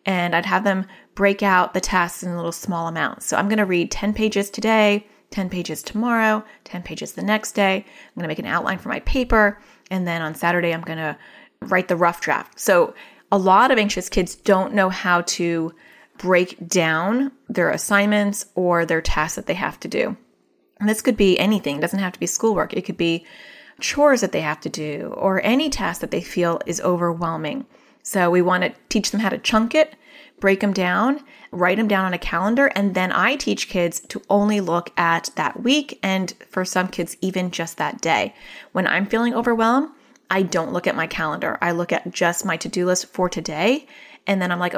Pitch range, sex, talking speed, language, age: 175-215 Hz, female, 215 wpm, English, 30-49